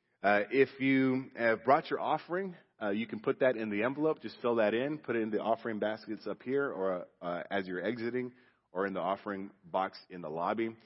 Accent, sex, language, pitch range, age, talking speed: American, male, English, 95-125 Hz, 30-49, 220 wpm